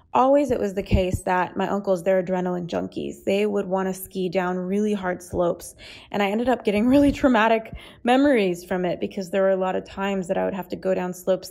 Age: 20-39